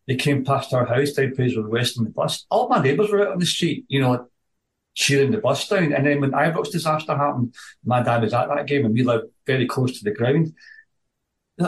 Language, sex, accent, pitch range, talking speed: English, male, British, 125-175 Hz, 240 wpm